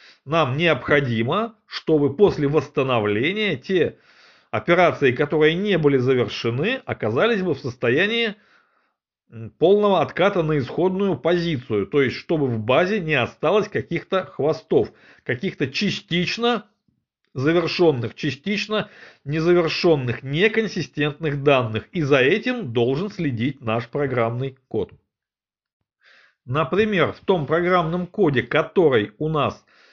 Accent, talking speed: native, 105 wpm